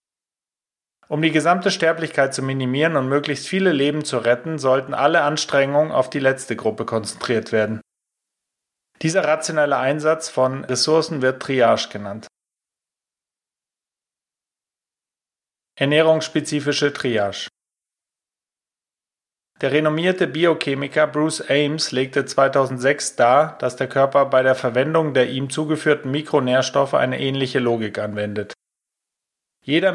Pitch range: 130-150 Hz